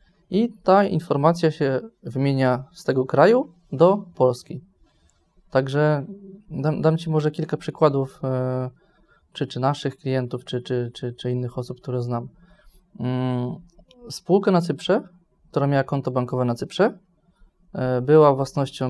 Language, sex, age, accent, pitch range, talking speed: Polish, male, 20-39, native, 130-175 Hz, 125 wpm